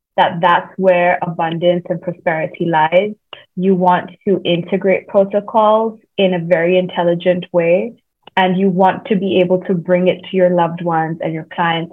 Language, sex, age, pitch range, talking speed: English, female, 20-39, 175-210 Hz, 165 wpm